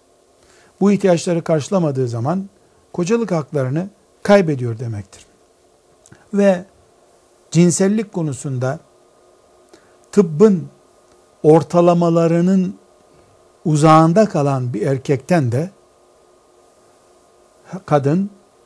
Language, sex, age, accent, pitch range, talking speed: Turkish, male, 60-79, native, 135-180 Hz, 60 wpm